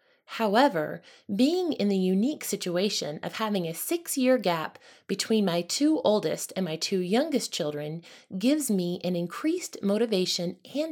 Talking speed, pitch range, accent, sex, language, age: 145 wpm, 180-255 Hz, American, female, English, 20-39